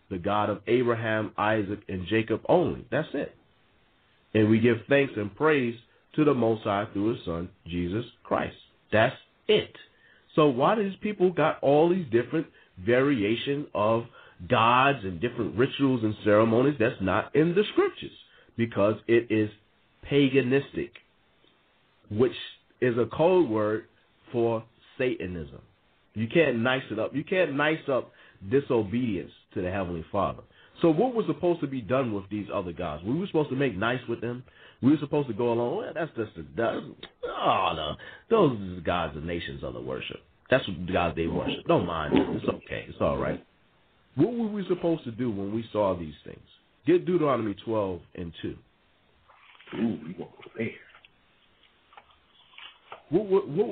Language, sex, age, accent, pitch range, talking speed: English, male, 40-59, American, 100-145 Hz, 165 wpm